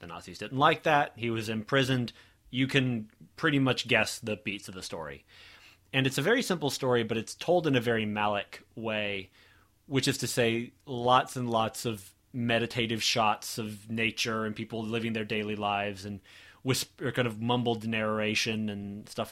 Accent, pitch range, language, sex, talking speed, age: American, 105-125 Hz, English, male, 180 wpm, 30-49